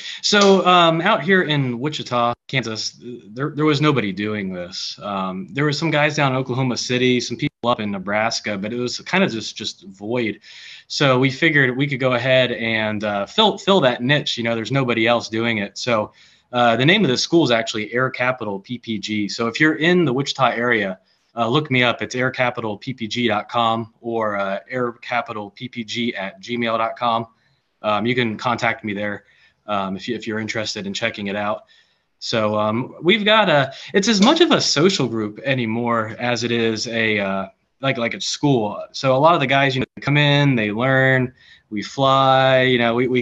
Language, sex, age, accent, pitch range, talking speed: English, male, 20-39, American, 110-135 Hz, 195 wpm